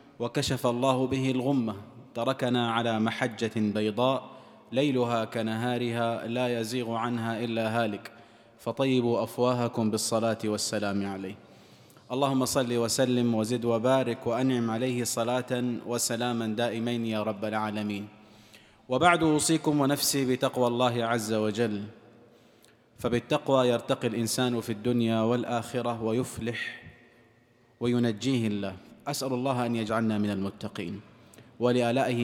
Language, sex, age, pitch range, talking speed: Arabic, male, 30-49, 115-130 Hz, 105 wpm